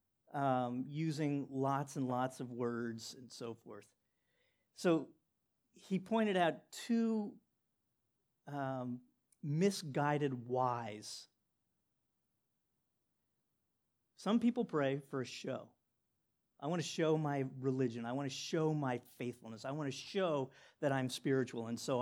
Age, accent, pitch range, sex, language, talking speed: 50-69, American, 125-150 Hz, male, English, 125 wpm